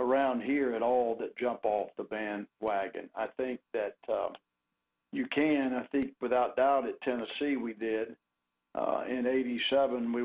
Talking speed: 160 wpm